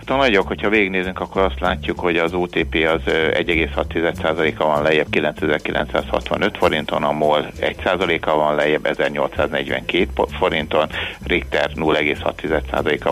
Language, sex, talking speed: Hungarian, male, 115 wpm